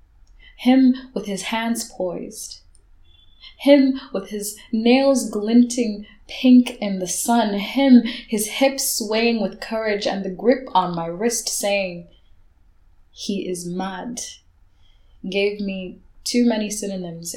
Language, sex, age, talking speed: Dutch, female, 10-29, 120 wpm